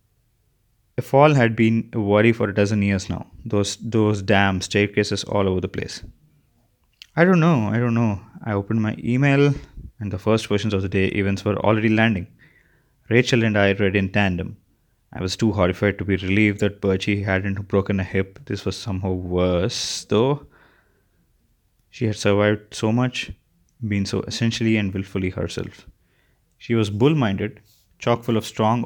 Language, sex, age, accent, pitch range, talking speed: English, male, 20-39, Indian, 100-120 Hz, 170 wpm